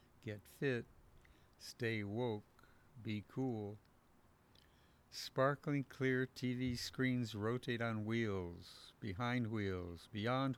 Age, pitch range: 60-79, 95-120 Hz